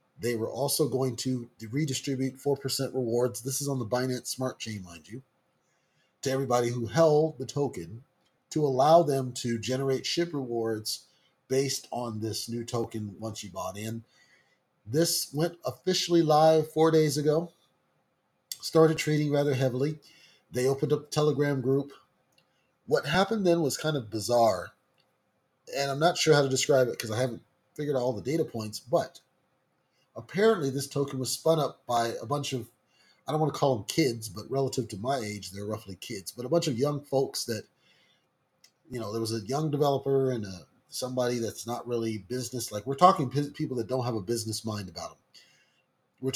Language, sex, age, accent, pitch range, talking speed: English, male, 30-49, American, 120-150 Hz, 180 wpm